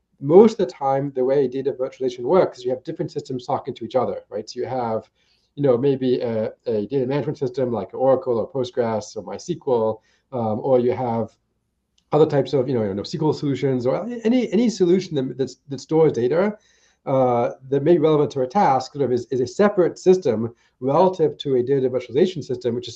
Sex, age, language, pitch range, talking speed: male, 30-49, English, 125-160 Hz, 210 wpm